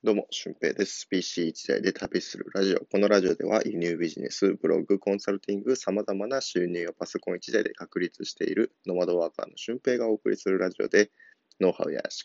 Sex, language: male, Japanese